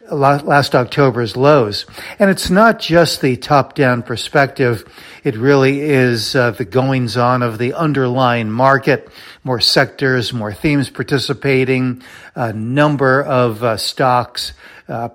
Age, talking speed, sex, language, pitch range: 60-79, 130 wpm, male, English, 120-145 Hz